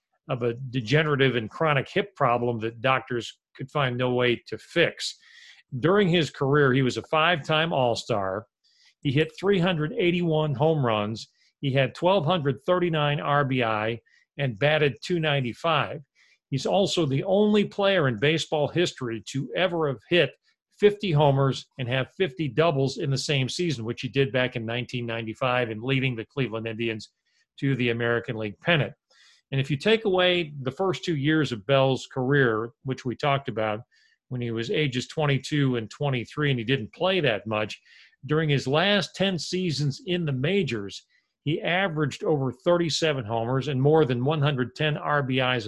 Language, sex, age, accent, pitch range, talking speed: English, male, 40-59, American, 125-160 Hz, 160 wpm